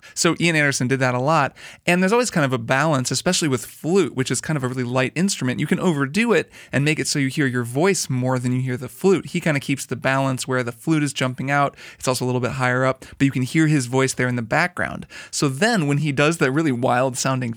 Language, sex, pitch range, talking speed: English, male, 130-160 Hz, 275 wpm